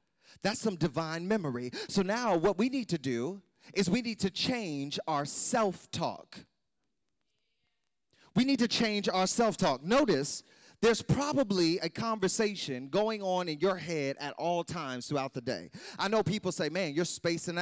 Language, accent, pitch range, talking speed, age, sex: English, American, 170-260 Hz, 160 wpm, 30-49, male